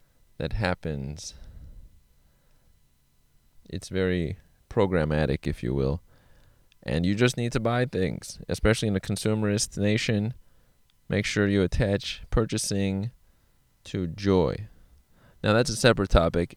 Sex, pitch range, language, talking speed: male, 85-115 Hz, English, 115 wpm